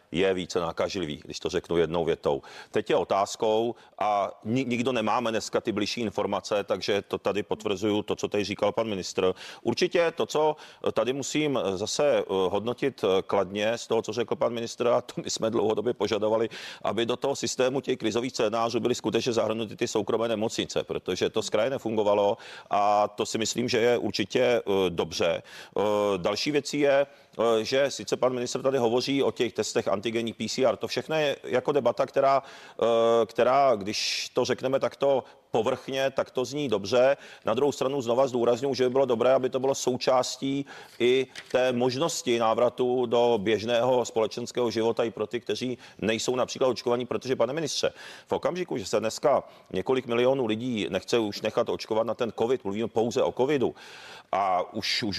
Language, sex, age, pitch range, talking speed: Czech, male, 40-59, 110-130 Hz, 170 wpm